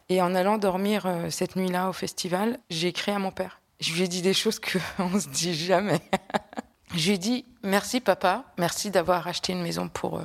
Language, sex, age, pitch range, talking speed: French, female, 20-39, 180-210 Hz, 205 wpm